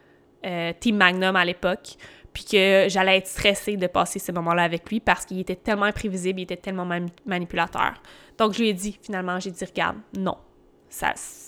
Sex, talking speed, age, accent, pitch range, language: female, 205 wpm, 20-39, Canadian, 175-200 Hz, French